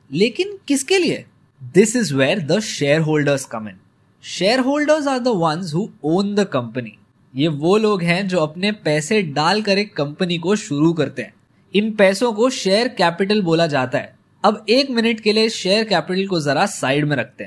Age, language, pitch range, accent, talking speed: 20-39, Hindi, 150-215 Hz, native, 175 wpm